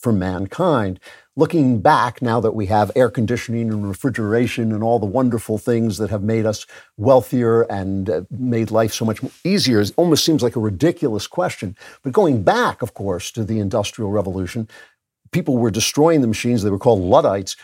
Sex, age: male, 50-69